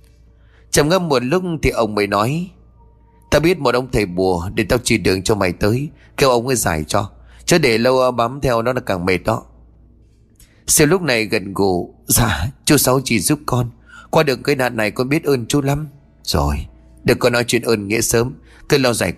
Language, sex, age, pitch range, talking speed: Vietnamese, male, 30-49, 100-140 Hz, 215 wpm